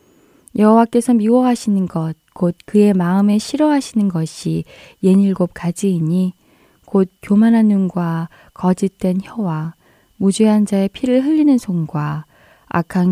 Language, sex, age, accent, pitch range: Korean, female, 20-39, native, 170-215 Hz